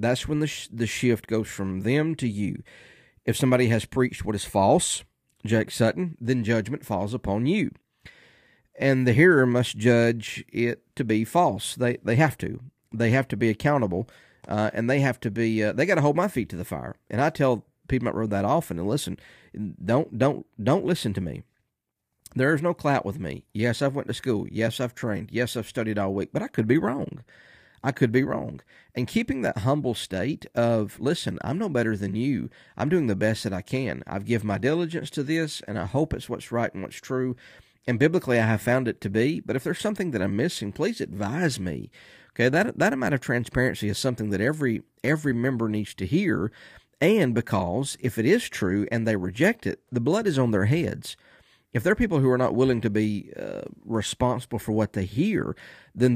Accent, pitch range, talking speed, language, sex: American, 110-135 Hz, 215 wpm, English, male